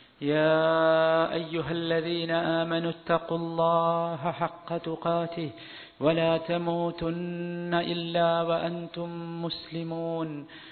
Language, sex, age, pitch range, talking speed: Malayalam, male, 40-59, 160-175 Hz, 75 wpm